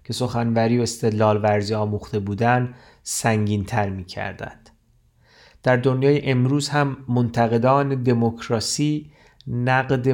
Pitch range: 110-130 Hz